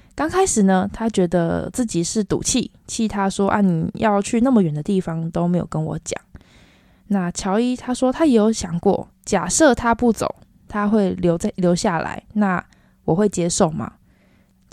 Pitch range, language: 180-235 Hz, Chinese